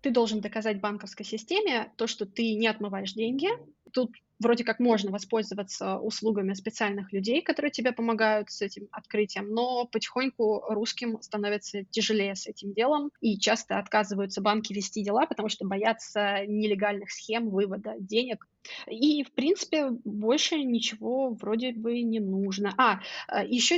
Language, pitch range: Russian, 210-245 Hz